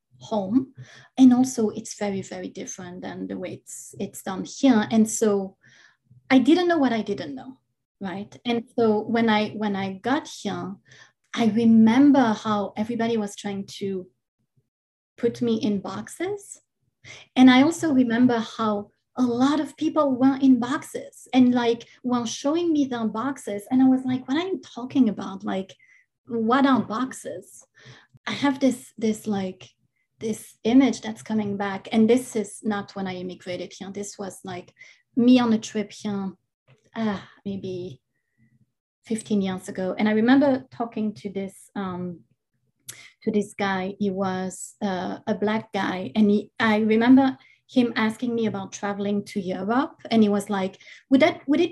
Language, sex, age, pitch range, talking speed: English, female, 30-49, 195-250 Hz, 165 wpm